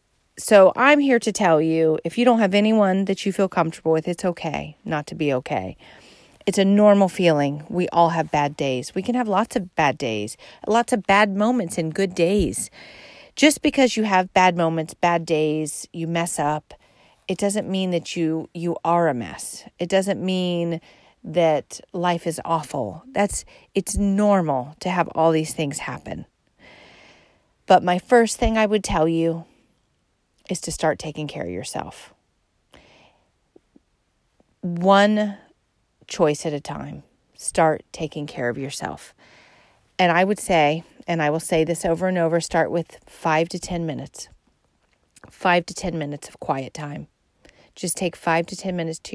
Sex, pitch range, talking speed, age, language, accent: female, 155-190 Hz, 170 wpm, 40-59, English, American